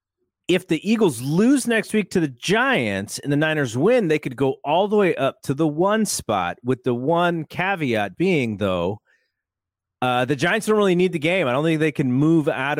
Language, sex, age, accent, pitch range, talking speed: English, male, 30-49, American, 110-160 Hz, 210 wpm